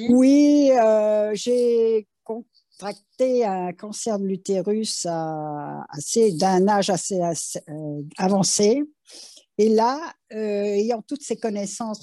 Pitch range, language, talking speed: 180-240 Hz, French, 115 wpm